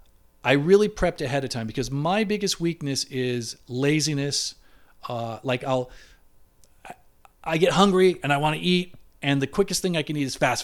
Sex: male